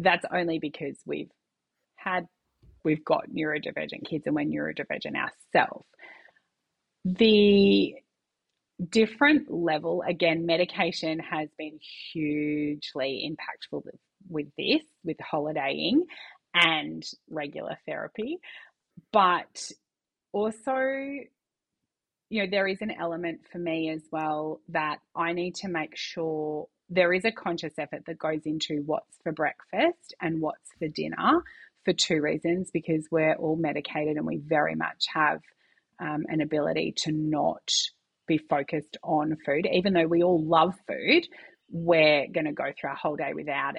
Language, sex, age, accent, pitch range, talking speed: English, female, 30-49, Australian, 155-195 Hz, 135 wpm